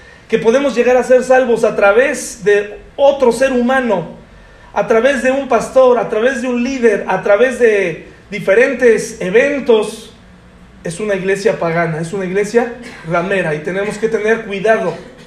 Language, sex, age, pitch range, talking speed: Spanish, male, 40-59, 200-250 Hz, 155 wpm